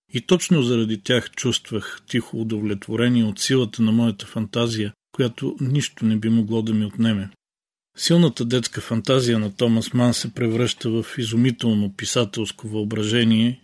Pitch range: 110-125 Hz